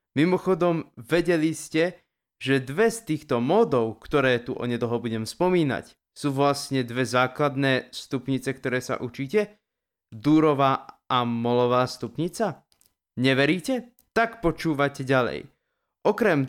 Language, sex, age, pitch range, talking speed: Slovak, male, 20-39, 125-170 Hz, 110 wpm